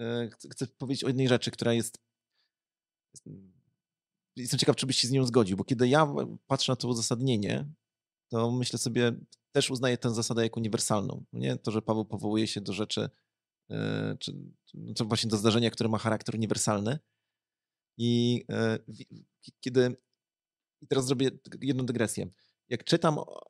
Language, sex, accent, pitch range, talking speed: Polish, male, native, 115-130 Hz, 150 wpm